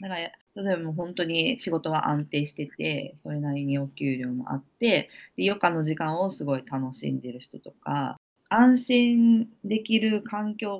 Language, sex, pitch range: Japanese, female, 140-195 Hz